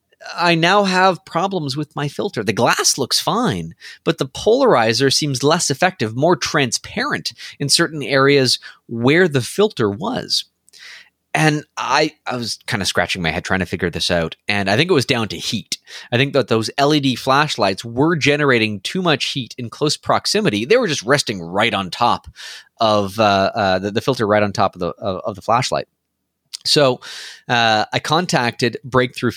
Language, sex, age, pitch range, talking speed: English, male, 30-49, 105-150 Hz, 180 wpm